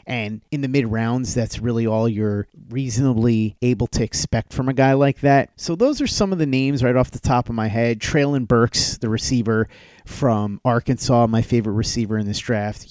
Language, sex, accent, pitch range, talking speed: English, male, American, 110-135 Hz, 200 wpm